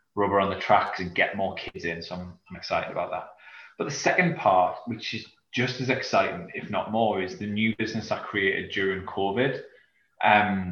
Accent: British